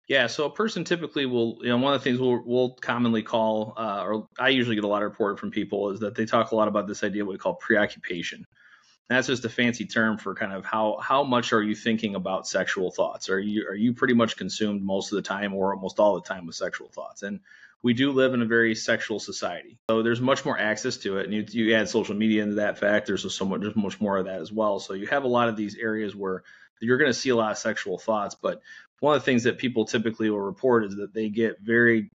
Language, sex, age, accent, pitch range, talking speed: English, male, 30-49, American, 100-120 Hz, 270 wpm